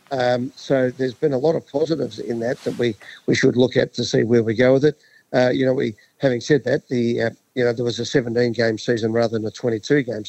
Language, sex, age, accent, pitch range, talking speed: English, male, 50-69, Australian, 120-140 Hz, 250 wpm